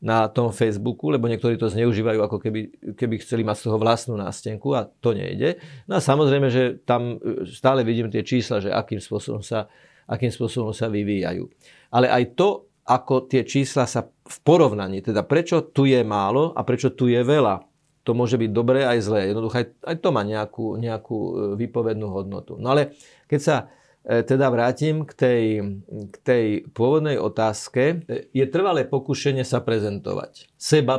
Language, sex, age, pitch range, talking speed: Slovak, male, 40-59, 110-130 Hz, 170 wpm